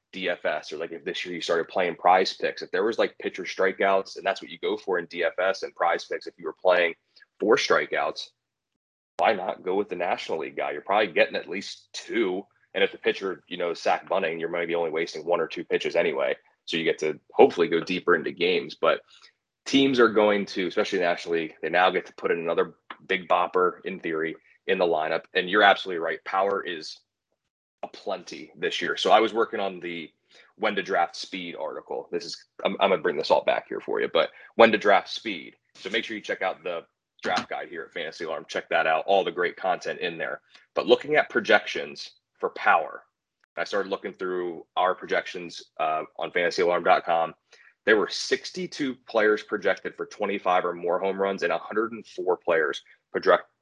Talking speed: 210 wpm